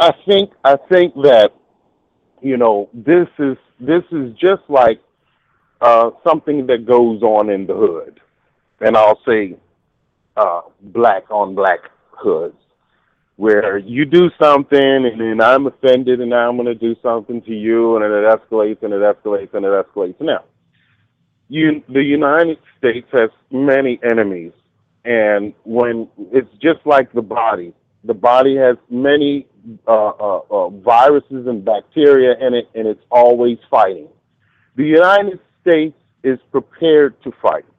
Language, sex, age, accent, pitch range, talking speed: English, male, 30-49, American, 115-165 Hz, 150 wpm